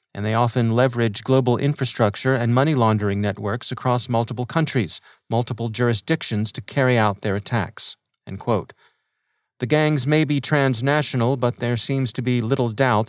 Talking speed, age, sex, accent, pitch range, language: 155 wpm, 30-49, male, American, 115-135 Hz, English